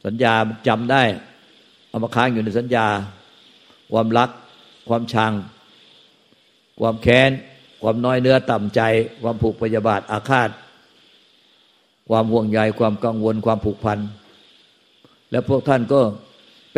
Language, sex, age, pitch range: Thai, male, 60-79, 110-130 Hz